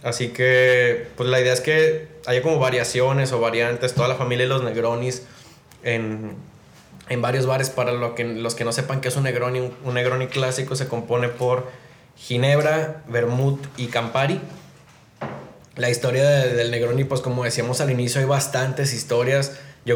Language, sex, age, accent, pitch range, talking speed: Spanish, male, 20-39, Mexican, 120-140 Hz, 170 wpm